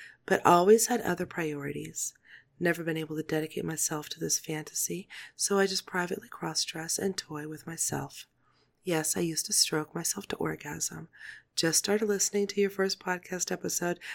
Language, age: English, 30-49